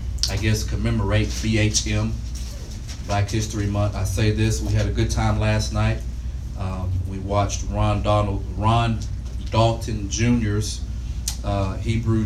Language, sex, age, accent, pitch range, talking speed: English, male, 30-49, American, 90-110 Hz, 130 wpm